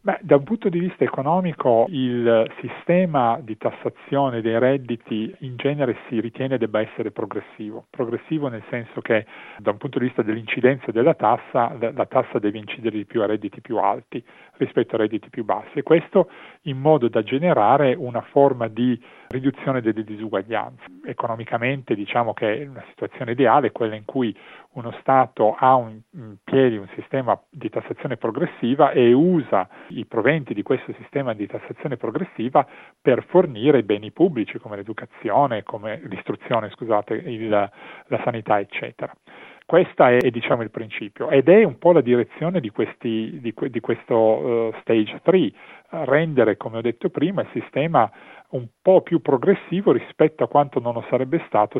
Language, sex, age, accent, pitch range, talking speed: Italian, male, 40-59, native, 110-140 Hz, 165 wpm